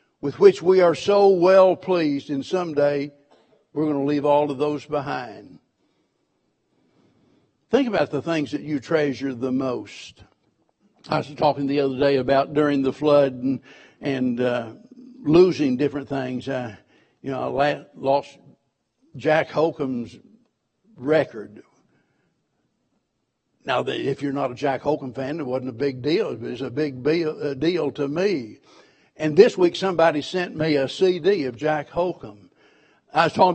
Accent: American